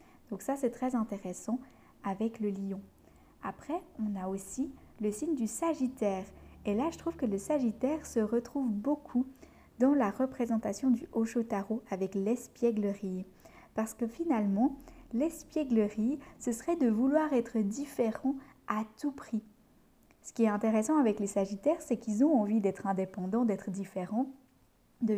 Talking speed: 150 wpm